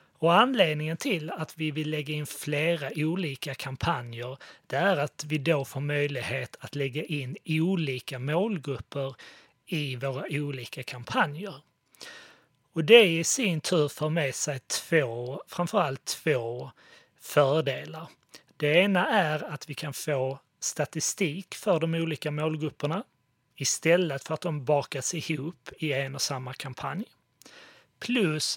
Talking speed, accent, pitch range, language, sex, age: 135 wpm, native, 135-165 Hz, Swedish, male, 30-49